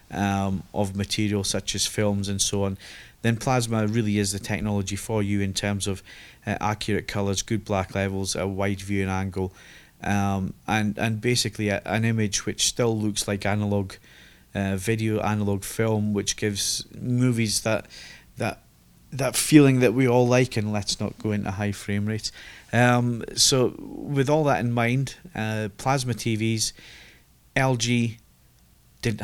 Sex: male